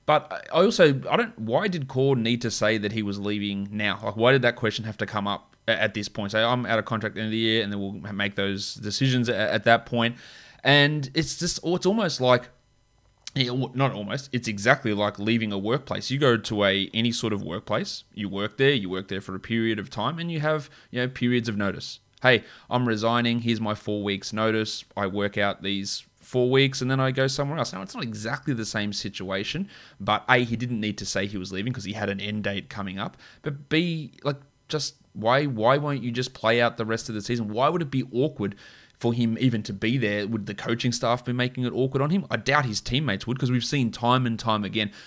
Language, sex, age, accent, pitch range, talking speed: English, male, 20-39, Australian, 110-135 Hz, 245 wpm